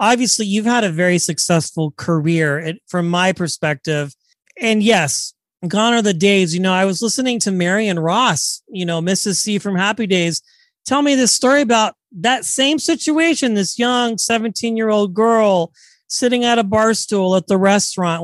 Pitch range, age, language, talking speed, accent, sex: 185-225 Hz, 40-59, English, 175 wpm, American, male